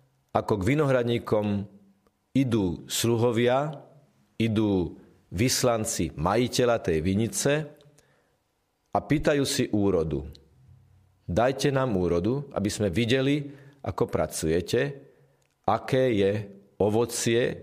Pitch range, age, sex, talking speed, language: 95-130 Hz, 40-59, male, 85 wpm, Slovak